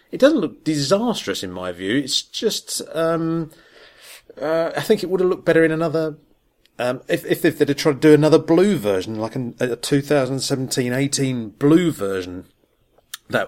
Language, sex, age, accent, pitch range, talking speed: English, male, 30-49, British, 105-145 Hz, 180 wpm